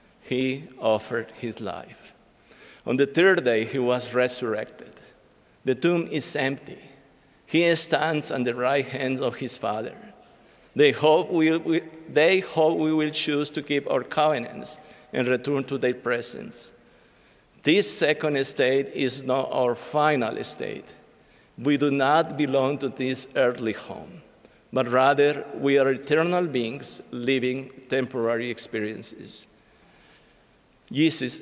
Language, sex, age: English, male, 50-69